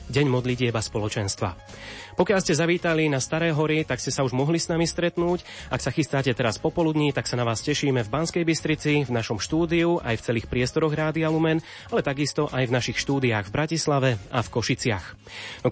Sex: male